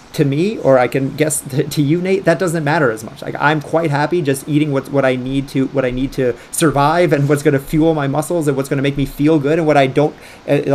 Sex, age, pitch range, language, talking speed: male, 30-49, 130-155 Hz, English, 285 wpm